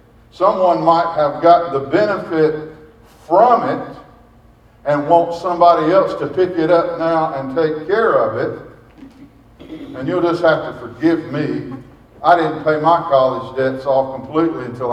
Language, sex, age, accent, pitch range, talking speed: English, male, 60-79, American, 135-185 Hz, 155 wpm